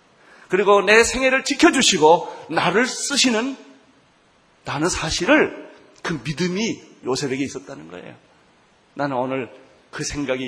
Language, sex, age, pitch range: Korean, male, 30-49, 155-240 Hz